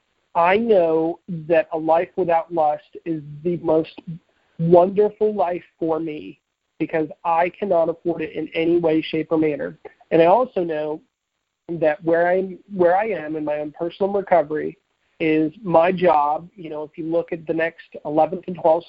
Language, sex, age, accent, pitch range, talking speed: English, male, 40-59, American, 155-180 Hz, 170 wpm